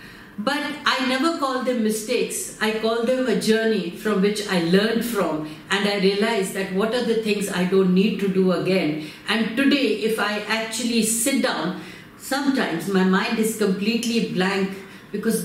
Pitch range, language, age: 195-255 Hz, English, 50-69